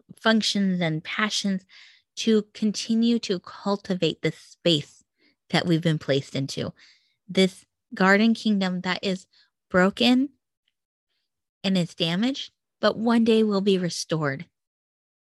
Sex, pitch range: female, 175-215 Hz